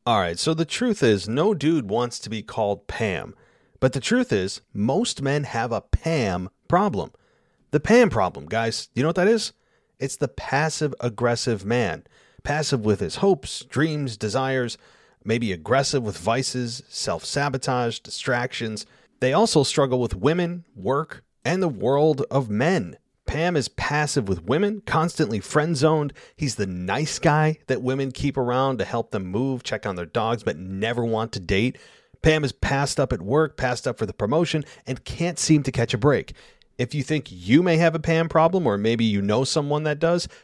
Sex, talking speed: male, 180 wpm